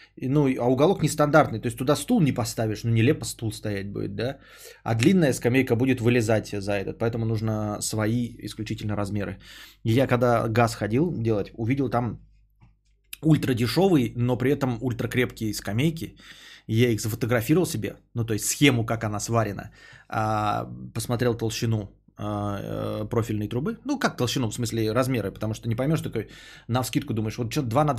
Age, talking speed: 20-39, 160 wpm